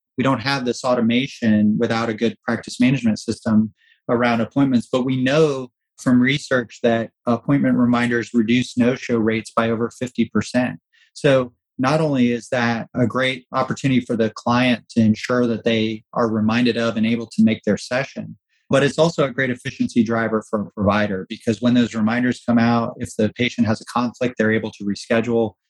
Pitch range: 110-125 Hz